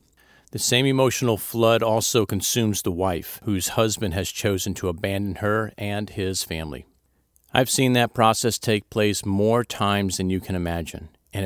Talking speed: 160 wpm